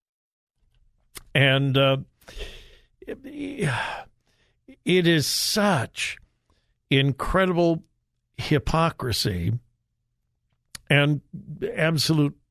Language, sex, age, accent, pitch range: English, male, 60-79, American, 125-170 Hz